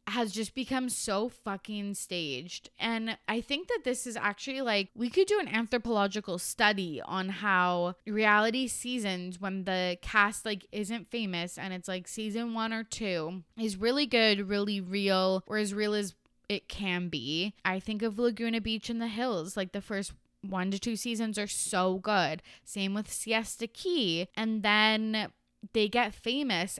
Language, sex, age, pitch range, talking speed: English, female, 20-39, 185-225 Hz, 170 wpm